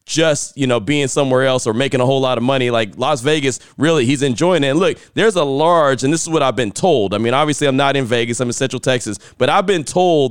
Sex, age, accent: male, 30-49, American